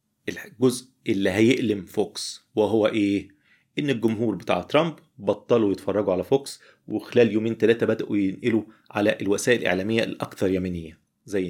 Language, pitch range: Arabic, 95-120 Hz